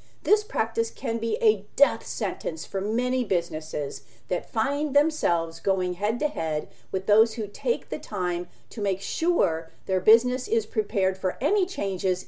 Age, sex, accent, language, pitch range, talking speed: 50-69, female, American, English, 195-290 Hz, 150 wpm